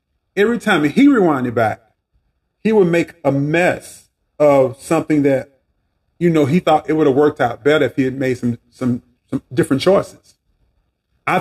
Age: 40-59